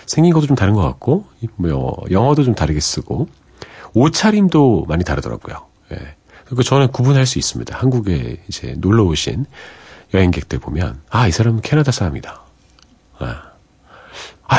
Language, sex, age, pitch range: Korean, male, 40-59, 75-120 Hz